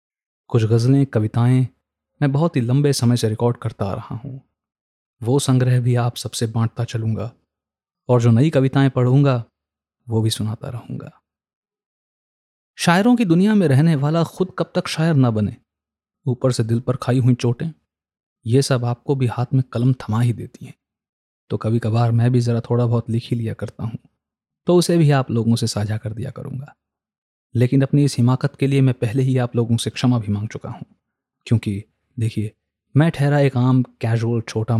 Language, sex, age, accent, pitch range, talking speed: Hindi, male, 30-49, native, 110-135 Hz, 185 wpm